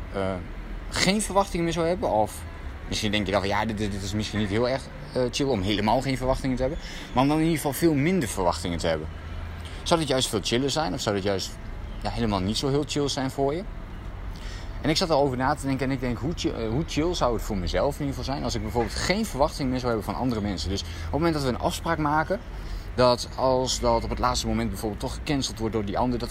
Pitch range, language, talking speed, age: 95-135 Hz, Dutch, 260 wpm, 20-39